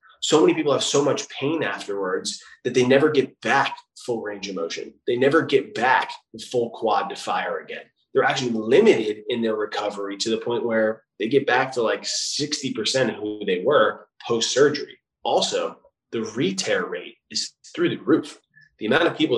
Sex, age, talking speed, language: male, 20-39, 185 wpm, English